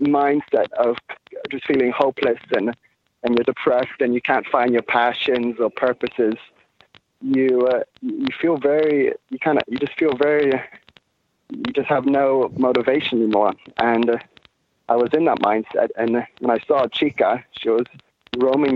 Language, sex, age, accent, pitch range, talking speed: English, male, 20-39, British, 110-130 Hz, 160 wpm